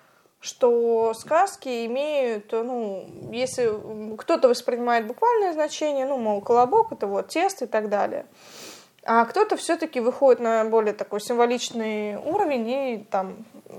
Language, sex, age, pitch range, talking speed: Russian, female, 20-39, 225-285 Hz, 130 wpm